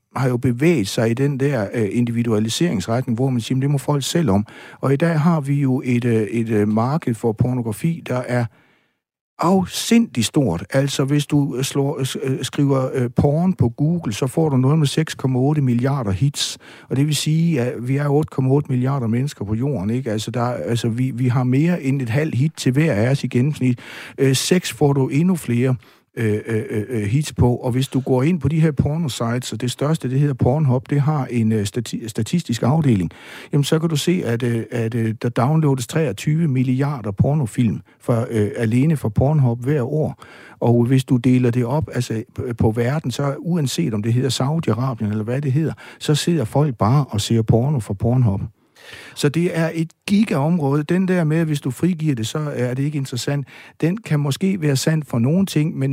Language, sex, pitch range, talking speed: Danish, male, 120-155 Hz, 205 wpm